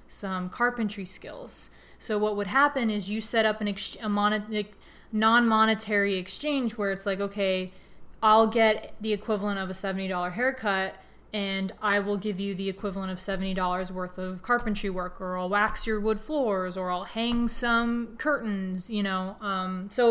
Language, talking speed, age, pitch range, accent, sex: English, 175 wpm, 20-39, 190-215 Hz, American, female